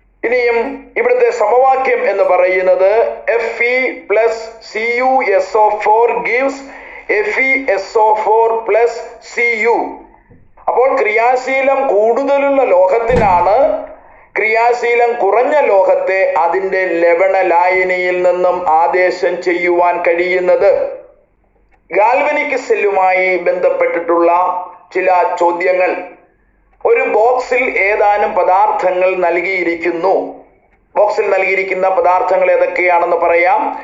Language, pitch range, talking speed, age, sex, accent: Malayalam, 185-275 Hz, 50 wpm, 50-69, male, native